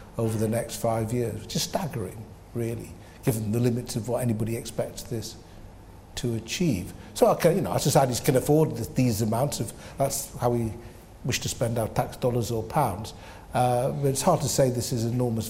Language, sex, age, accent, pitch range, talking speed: English, male, 60-79, British, 115-145 Hz, 195 wpm